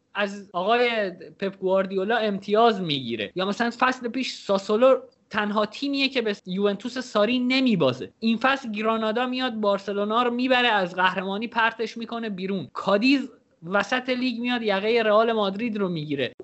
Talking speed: 140 wpm